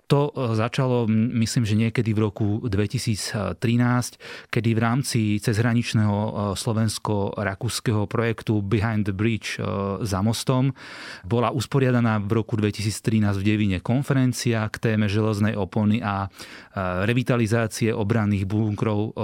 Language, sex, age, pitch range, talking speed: Slovak, male, 30-49, 105-120 Hz, 110 wpm